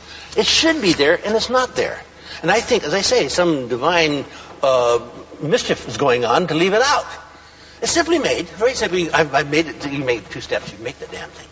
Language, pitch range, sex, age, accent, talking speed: English, 155-180 Hz, male, 60-79, American, 225 wpm